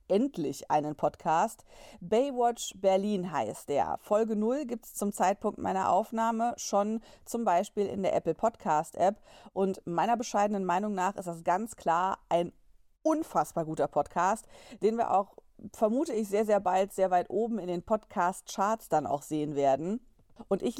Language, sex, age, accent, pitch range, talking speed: German, female, 40-59, German, 190-235 Hz, 165 wpm